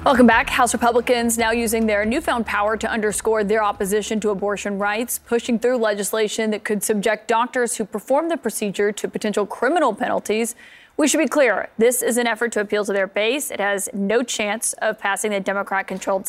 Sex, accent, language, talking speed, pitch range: female, American, English, 190 wpm, 205-235 Hz